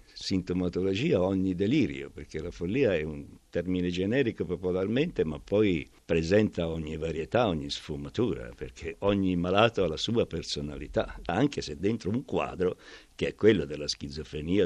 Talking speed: 145 wpm